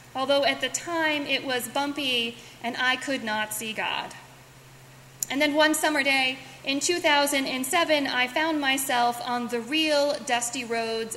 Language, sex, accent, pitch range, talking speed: English, female, American, 235-290 Hz, 150 wpm